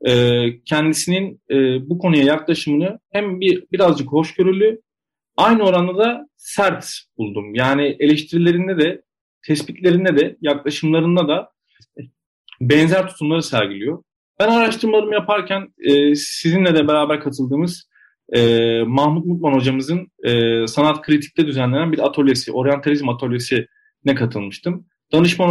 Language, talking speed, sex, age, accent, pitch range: Turkish, 100 wpm, male, 40-59, native, 130-180 Hz